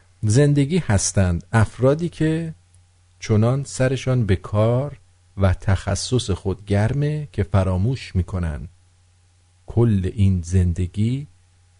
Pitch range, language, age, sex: 90-115 Hz, English, 50-69, male